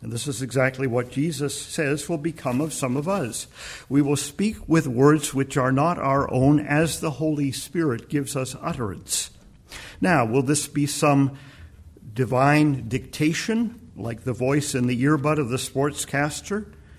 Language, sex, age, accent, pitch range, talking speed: English, male, 50-69, American, 120-150 Hz, 160 wpm